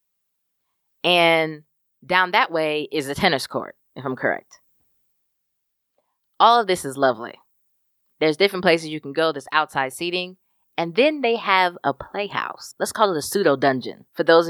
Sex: female